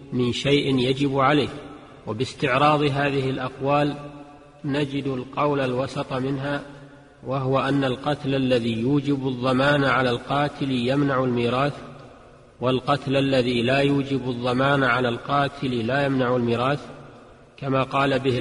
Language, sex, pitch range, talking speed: Arabic, male, 130-140 Hz, 110 wpm